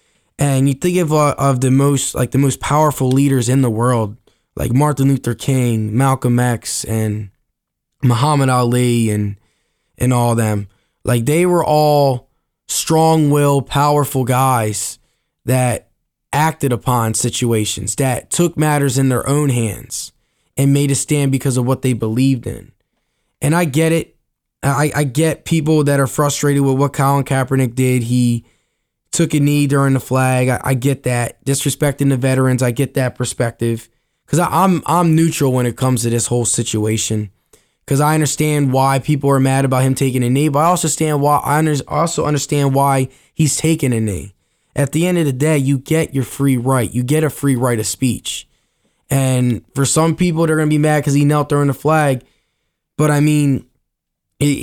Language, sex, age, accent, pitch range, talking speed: English, male, 10-29, American, 125-150 Hz, 180 wpm